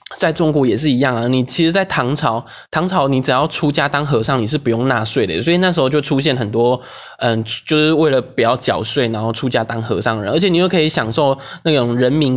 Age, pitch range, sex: 20-39, 120-150 Hz, male